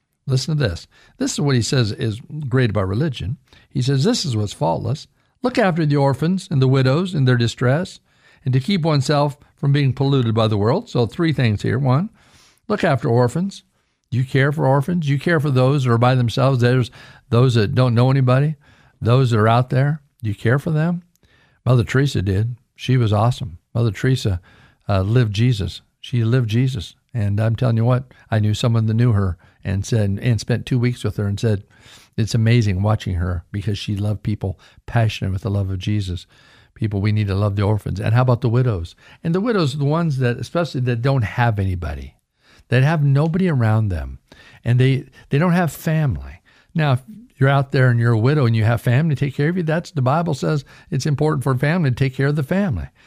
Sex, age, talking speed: male, 50-69, 215 wpm